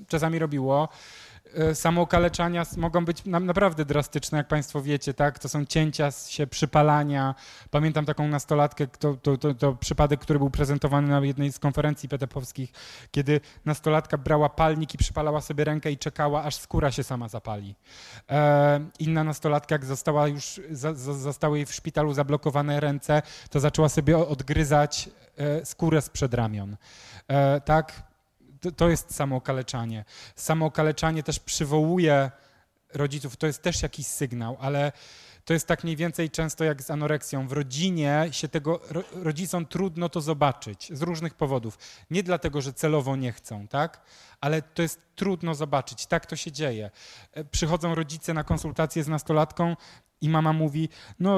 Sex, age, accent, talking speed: male, 20-39, native, 150 wpm